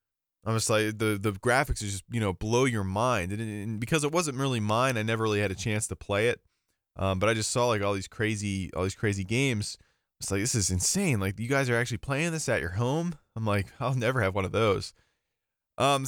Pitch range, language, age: 105-145 Hz, English, 20-39